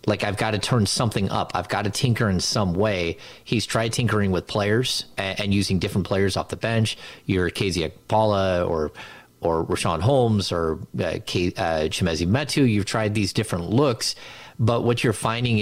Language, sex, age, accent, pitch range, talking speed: English, male, 30-49, American, 95-120 Hz, 185 wpm